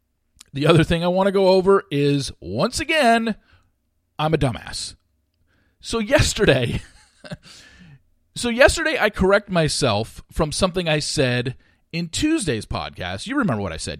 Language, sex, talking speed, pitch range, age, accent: English, male, 140 wpm, 100-160 Hz, 40-59, American